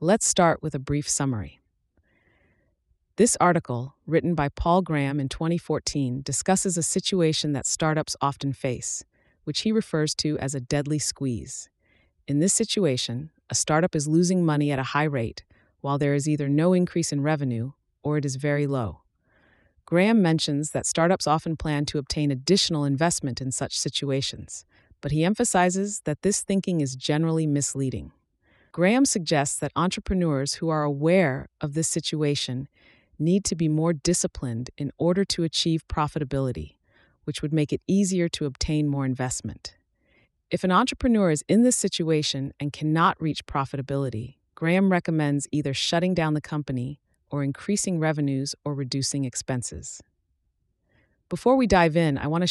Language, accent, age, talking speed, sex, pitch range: English, American, 30-49, 155 wpm, female, 135-170 Hz